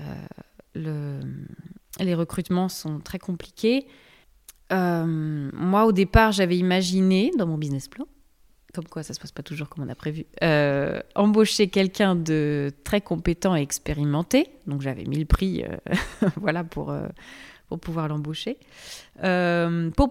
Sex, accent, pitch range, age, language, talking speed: female, French, 155-190 Hz, 20-39, French, 150 wpm